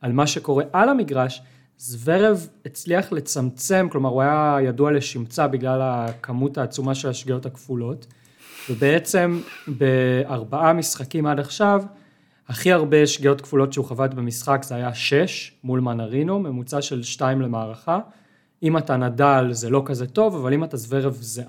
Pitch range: 125-155 Hz